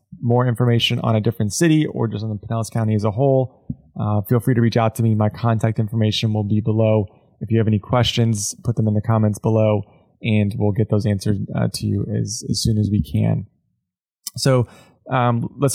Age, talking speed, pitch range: 20-39, 215 wpm, 110-125 Hz